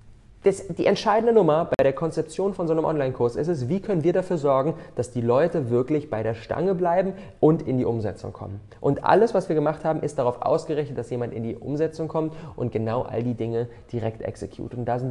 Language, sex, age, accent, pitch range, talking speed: German, male, 20-39, German, 115-165 Hz, 225 wpm